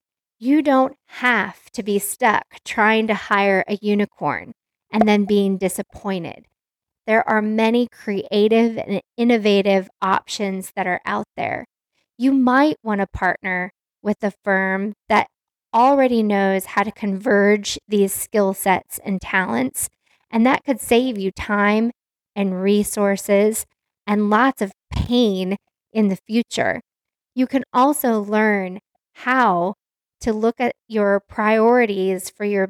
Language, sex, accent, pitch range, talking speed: English, female, American, 195-235 Hz, 130 wpm